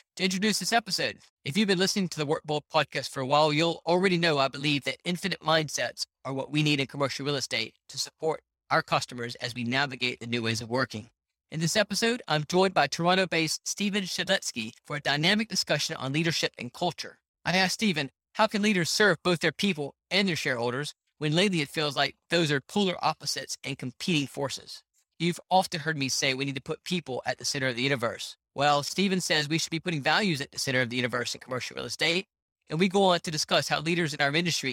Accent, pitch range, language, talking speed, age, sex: American, 135-180 Hz, English, 225 wpm, 30-49, male